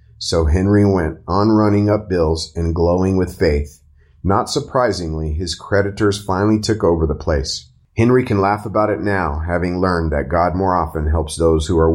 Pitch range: 80-100 Hz